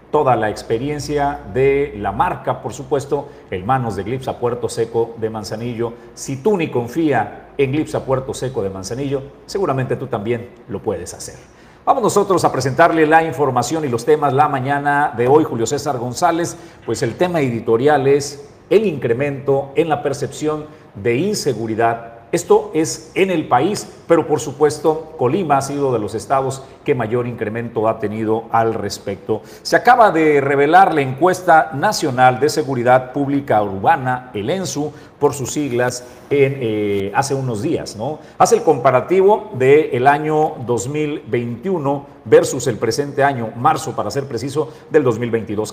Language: Spanish